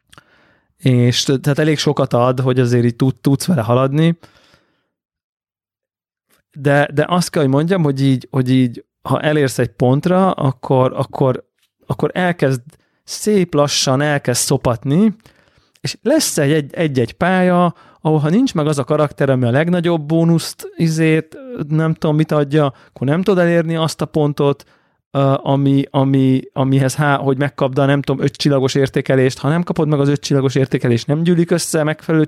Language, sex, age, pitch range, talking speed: Hungarian, male, 30-49, 135-160 Hz, 155 wpm